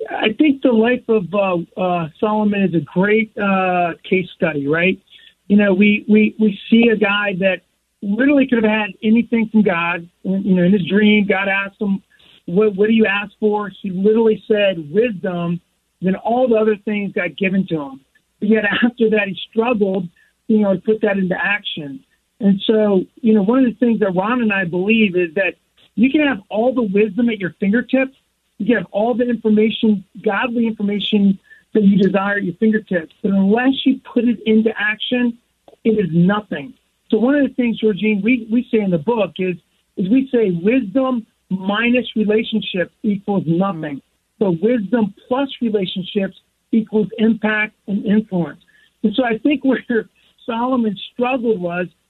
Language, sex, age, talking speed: English, male, 40-59, 180 wpm